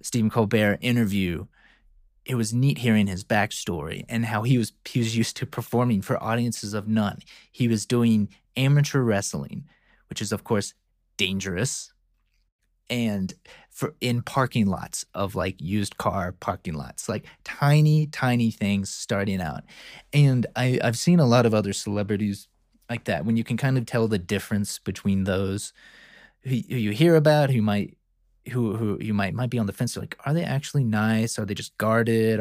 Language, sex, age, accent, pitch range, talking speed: English, male, 30-49, American, 100-120 Hz, 180 wpm